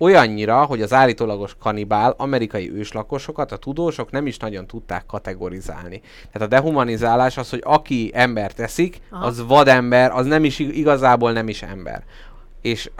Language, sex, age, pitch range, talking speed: Hungarian, male, 30-49, 110-155 Hz, 150 wpm